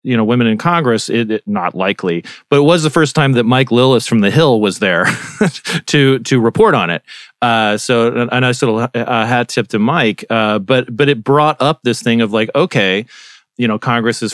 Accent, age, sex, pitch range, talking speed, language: American, 30-49, male, 105-135 Hz, 225 wpm, English